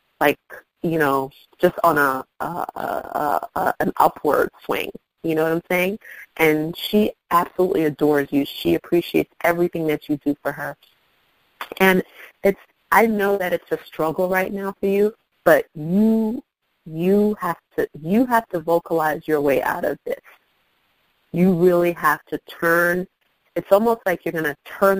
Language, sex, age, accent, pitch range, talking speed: English, female, 30-49, American, 150-185 Hz, 165 wpm